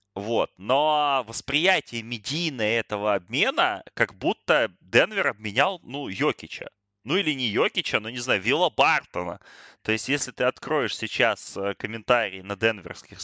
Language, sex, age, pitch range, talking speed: Russian, male, 20-39, 110-150 Hz, 135 wpm